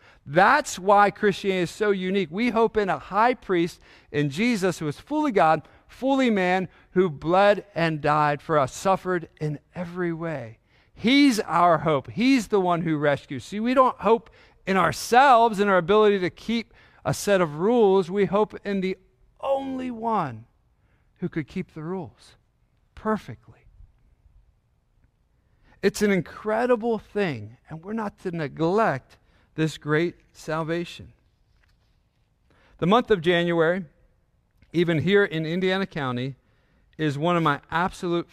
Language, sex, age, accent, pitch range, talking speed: English, male, 50-69, American, 130-195 Hz, 140 wpm